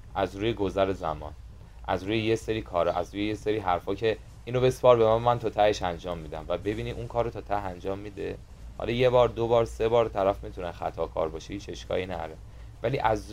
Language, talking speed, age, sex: Persian, 225 wpm, 30-49, male